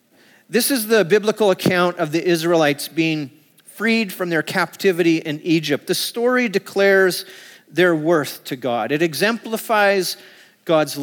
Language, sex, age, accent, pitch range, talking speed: English, male, 40-59, American, 155-190 Hz, 135 wpm